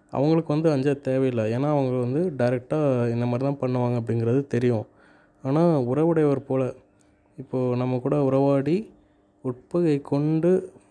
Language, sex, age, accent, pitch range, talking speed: Tamil, male, 20-39, native, 115-145 Hz, 125 wpm